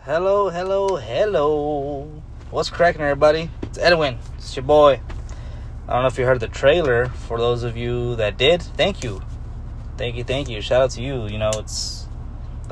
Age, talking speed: 20-39, 185 wpm